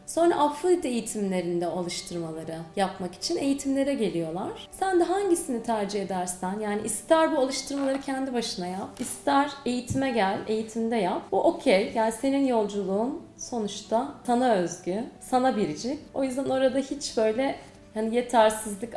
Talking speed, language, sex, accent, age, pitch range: 130 wpm, Turkish, female, native, 30-49, 200-290 Hz